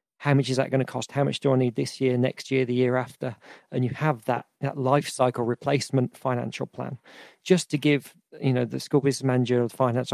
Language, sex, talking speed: English, male, 245 wpm